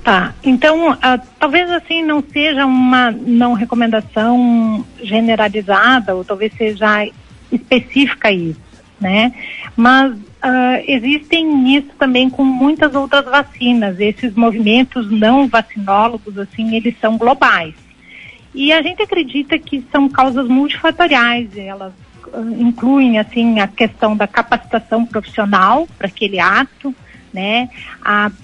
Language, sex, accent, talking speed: Portuguese, female, Brazilian, 110 wpm